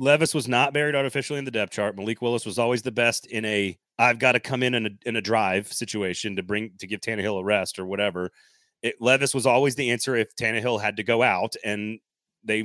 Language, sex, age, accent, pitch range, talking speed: English, male, 30-49, American, 110-145 Hz, 230 wpm